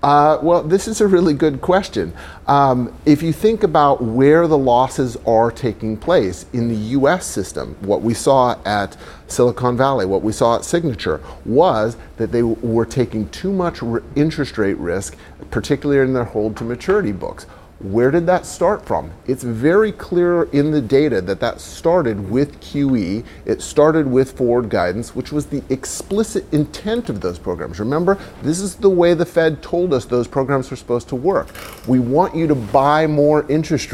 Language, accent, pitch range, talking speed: English, American, 115-150 Hz, 180 wpm